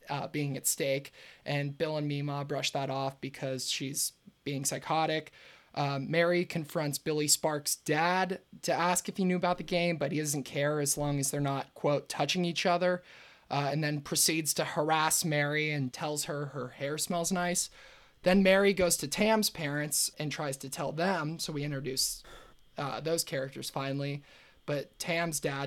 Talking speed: 180 wpm